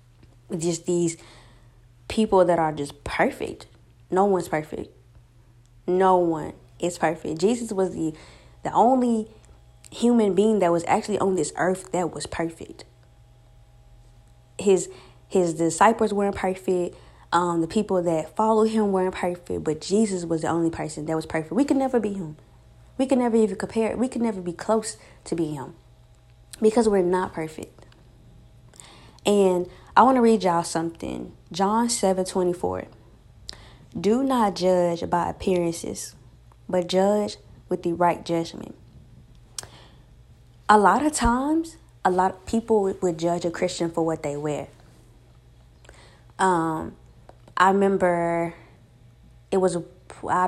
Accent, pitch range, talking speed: American, 125-190 Hz, 140 wpm